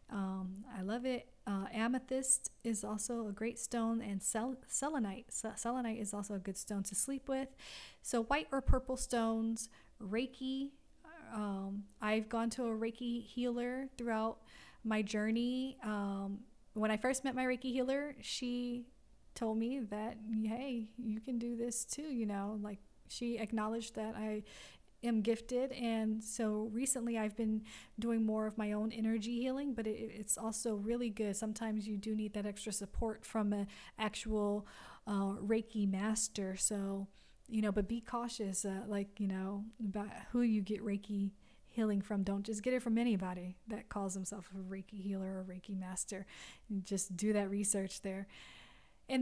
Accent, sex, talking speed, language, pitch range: American, female, 170 wpm, English, 205-245 Hz